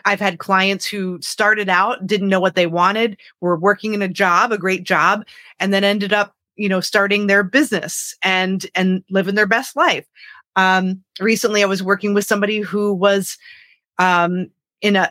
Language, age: English, 30-49